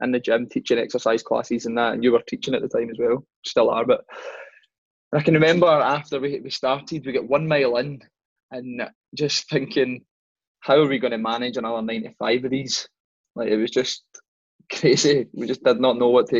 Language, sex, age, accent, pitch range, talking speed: English, male, 20-39, British, 120-155 Hz, 205 wpm